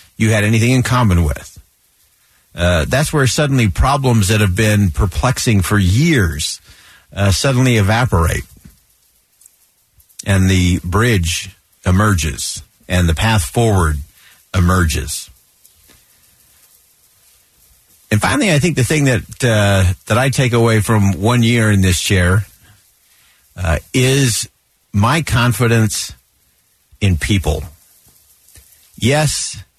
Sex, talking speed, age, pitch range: male, 110 wpm, 50-69, 85-120 Hz